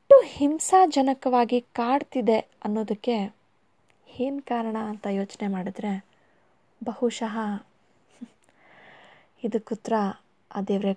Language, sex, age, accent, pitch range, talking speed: Kannada, female, 20-39, native, 215-315 Hz, 70 wpm